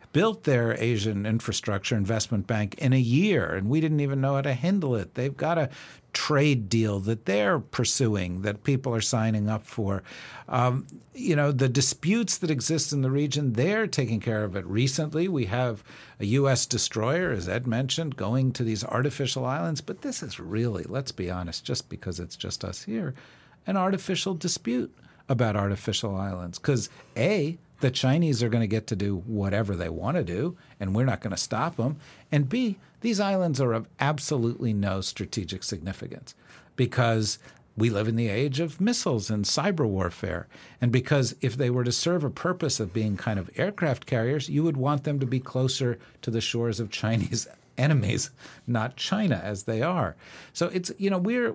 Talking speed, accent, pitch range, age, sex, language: 185 wpm, American, 110-155 Hz, 50-69, male, English